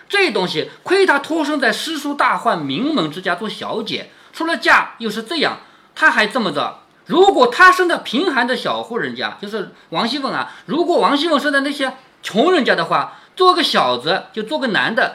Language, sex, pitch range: Chinese, male, 195-320 Hz